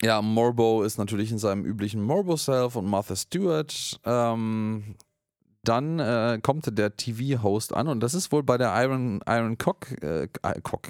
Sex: male